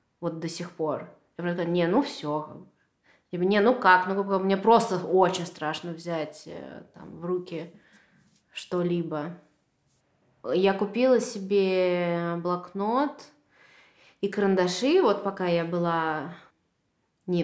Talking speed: 115 wpm